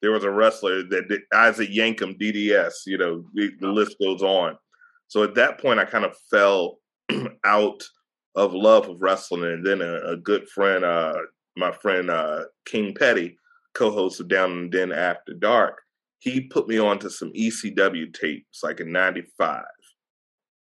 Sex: male